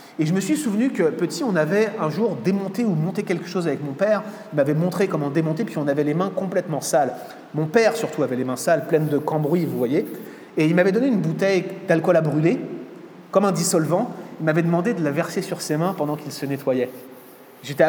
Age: 30-49